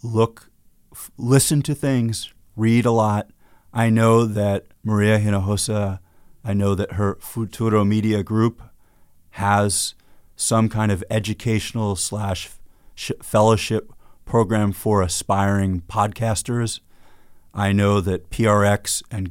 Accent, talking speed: American, 110 wpm